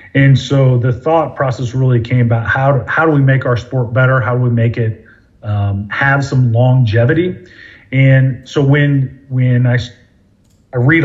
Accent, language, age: American, English, 40-59